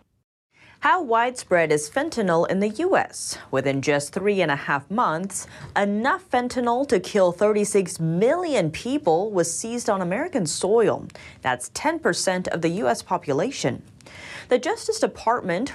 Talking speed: 135 wpm